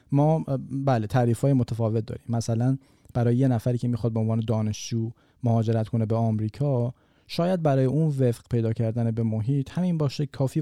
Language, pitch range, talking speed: Persian, 115-135 Hz, 165 wpm